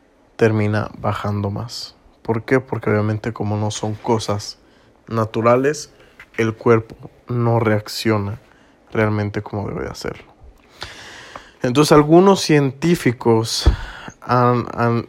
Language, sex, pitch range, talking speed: Spanish, male, 110-125 Hz, 100 wpm